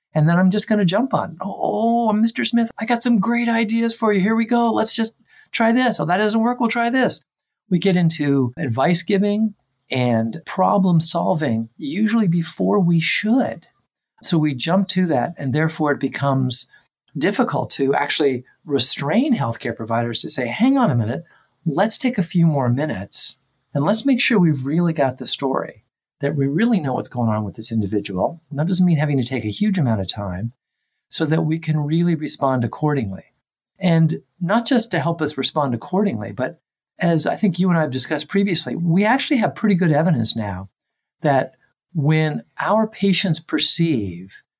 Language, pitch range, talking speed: English, 130-200 Hz, 185 wpm